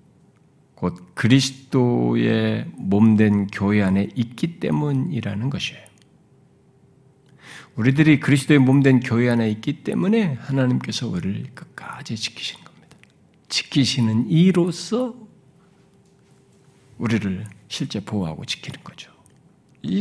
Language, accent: Korean, native